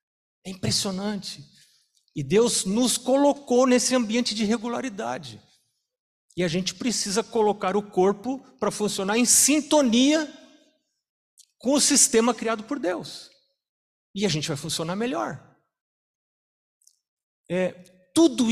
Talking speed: 110 wpm